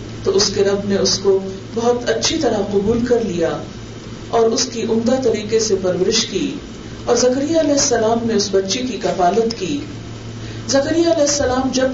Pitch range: 165-235 Hz